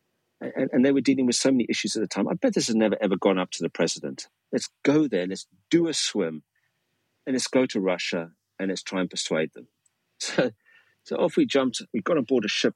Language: English